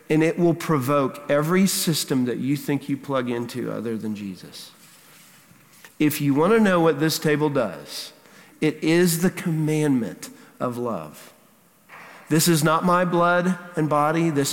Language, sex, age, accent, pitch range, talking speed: English, male, 50-69, American, 140-170 Hz, 155 wpm